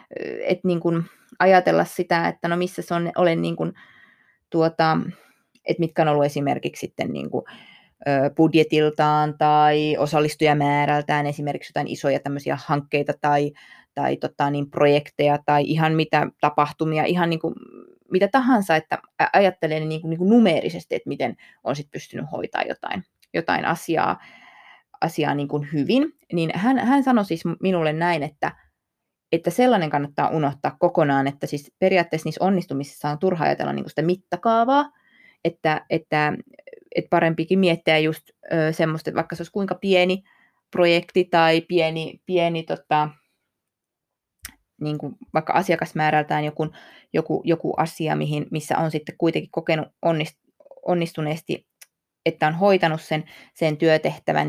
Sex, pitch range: female, 150-175 Hz